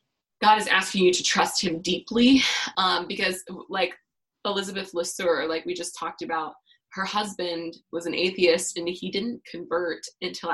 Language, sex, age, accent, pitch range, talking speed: English, female, 20-39, American, 170-200 Hz, 160 wpm